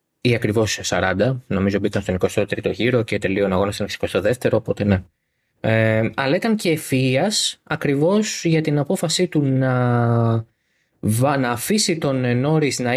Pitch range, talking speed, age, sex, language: 120-165 Hz, 145 wpm, 20-39, male, Greek